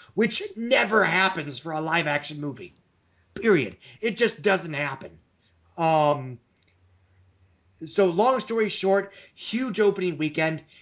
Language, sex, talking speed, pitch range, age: English, male, 115 wpm, 145-190 Hz, 30-49